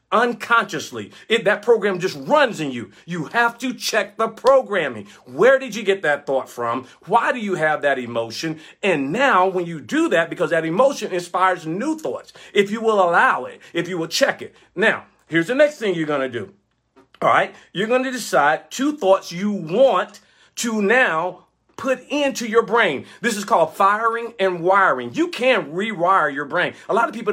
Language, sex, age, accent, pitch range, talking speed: English, male, 40-59, American, 170-235 Hz, 195 wpm